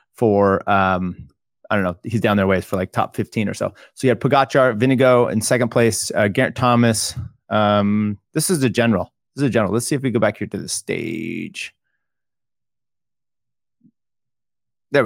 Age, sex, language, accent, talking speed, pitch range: 30-49, male, English, American, 185 wpm, 105-120 Hz